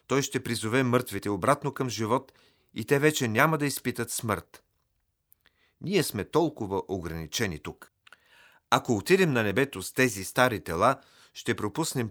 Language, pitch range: Bulgarian, 100-135 Hz